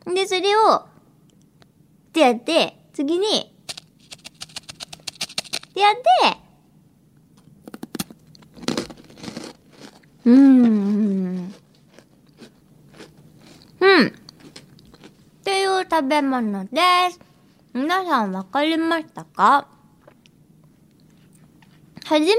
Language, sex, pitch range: Japanese, male, 220-370 Hz